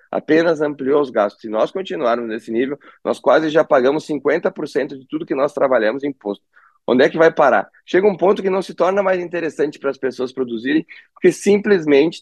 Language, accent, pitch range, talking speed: Portuguese, Brazilian, 120-165 Hz, 200 wpm